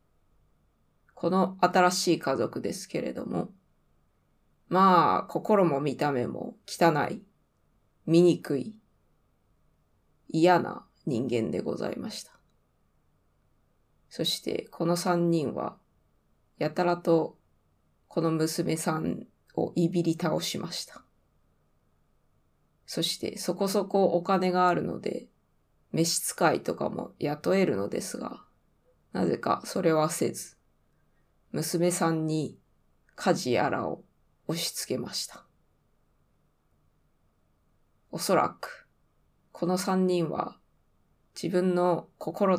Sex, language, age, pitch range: female, Japanese, 20-39, 150-180 Hz